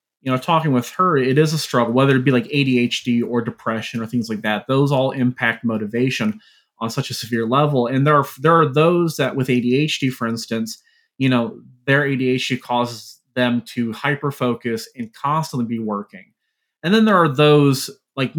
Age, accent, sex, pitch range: 30-49, American, male, 125-150 Hz